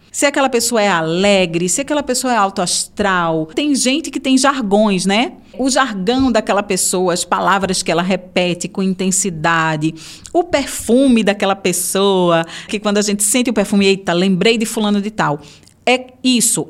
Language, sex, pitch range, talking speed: Portuguese, female, 185-260 Hz, 165 wpm